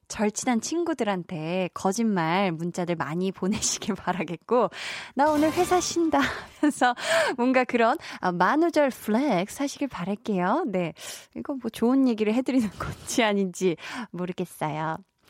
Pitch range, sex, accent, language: 185-280 Hz, female, native, Korean